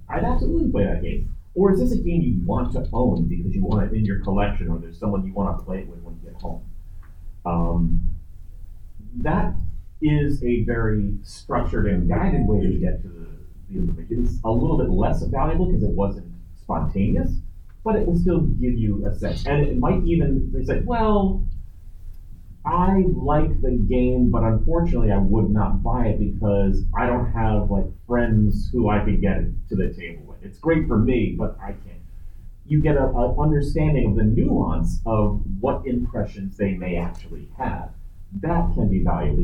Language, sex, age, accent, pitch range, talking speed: English, male, 30-49, American, 85-115 Hz, 190 wpm